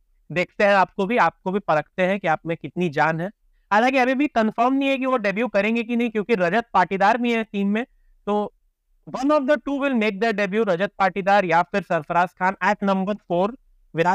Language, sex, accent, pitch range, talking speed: Hindi, male, native, 190-245 Hz, 135 wpm